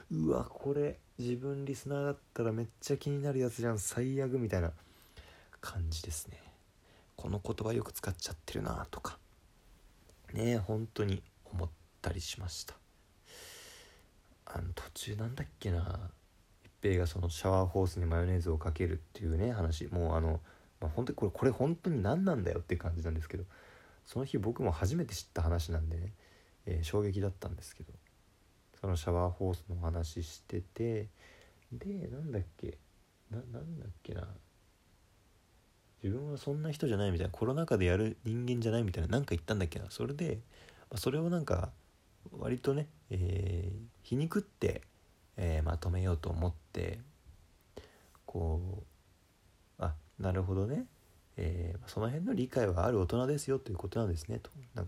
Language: Japanese